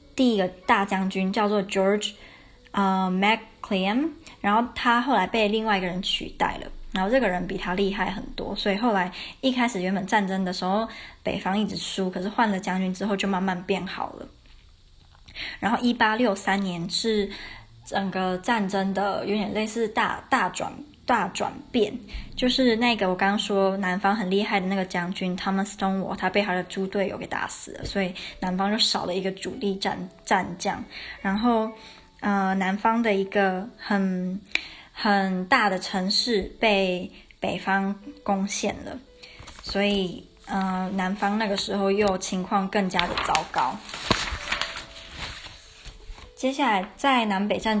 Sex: male